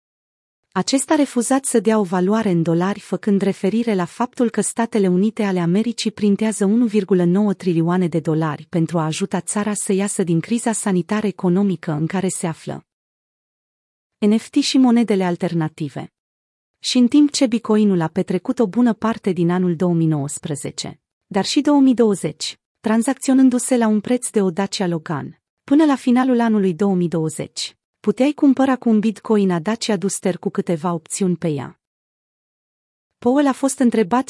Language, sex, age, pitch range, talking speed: Romanian, female, 30-49, 180-235 Hz, 145 wpm